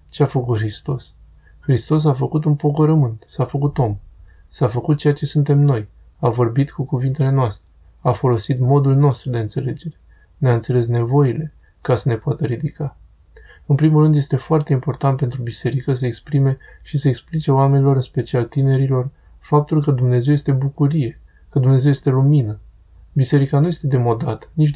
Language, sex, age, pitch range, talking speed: Romanian, male, 20-39, 120-140 Hz, 165 wpm